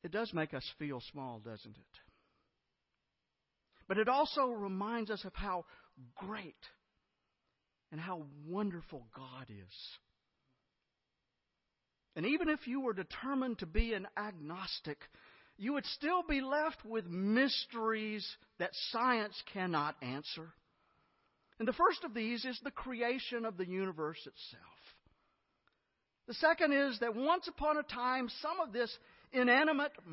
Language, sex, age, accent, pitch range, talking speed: English, male, 50-69, American, 165-270 Hz, 130 wpm